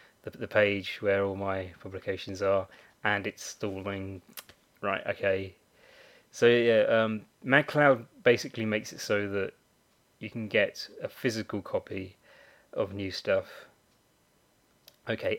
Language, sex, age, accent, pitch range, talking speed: English, male, 20-39, British, 100-120 Hz, 120 wpm